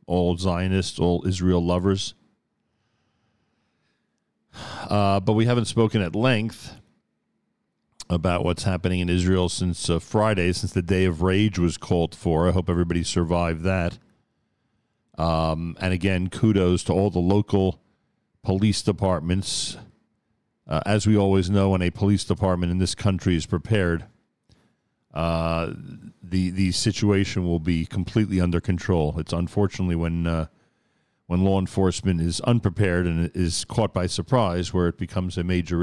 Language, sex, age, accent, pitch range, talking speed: English, male, 40-59, American, 90-100 Hz, 140 wpm